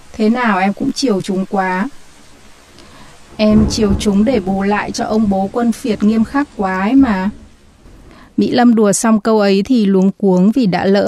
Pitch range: 190-235 Hz